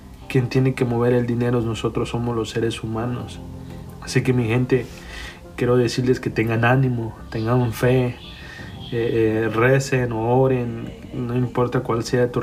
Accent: Mexican